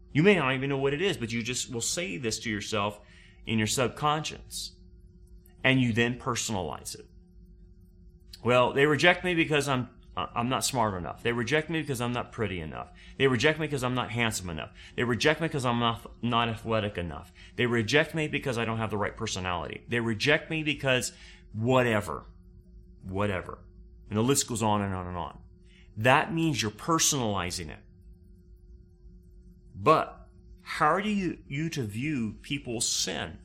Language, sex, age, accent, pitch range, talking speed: English, male, 30-49, American, 90-140 Hz, 175 wpm